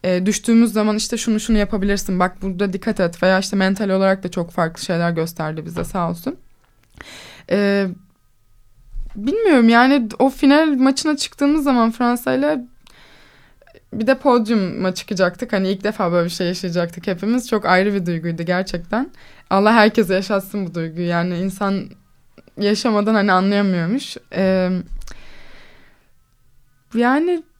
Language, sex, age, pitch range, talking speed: Turkish, female, 20-39, 180-230 Hz, 135 wpm